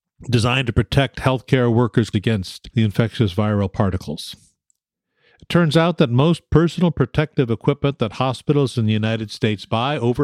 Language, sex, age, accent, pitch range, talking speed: English, male, 50-69, American, 105-140 Hz, 150 wpm